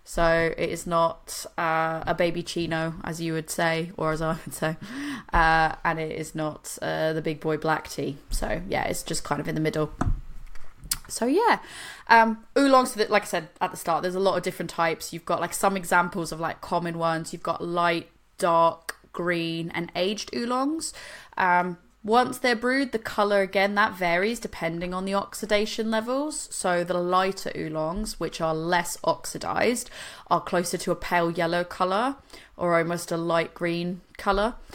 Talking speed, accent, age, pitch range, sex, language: 180 wpm, British, 20-39, 165-200 Hz, female, English